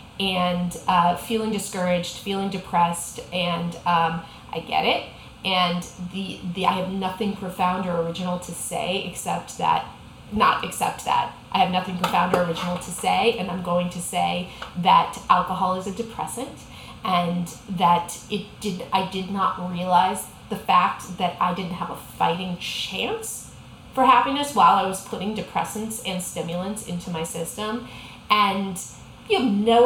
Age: 30-49